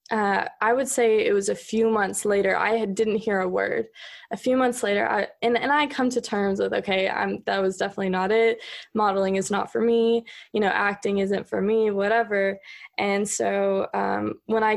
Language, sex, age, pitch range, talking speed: English, female, 20-39, 195-220 Hz, 200 wpm